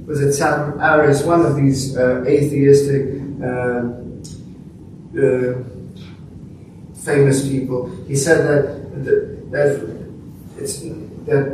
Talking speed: 95 wpm